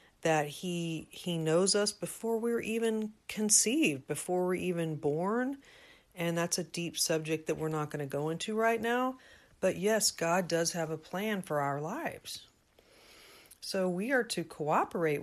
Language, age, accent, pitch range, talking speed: English, 50-69, American, 155-195 Hz, 175 wpm